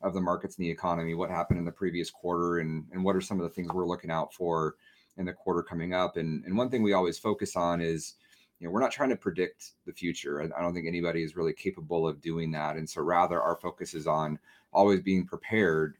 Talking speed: 255 wpm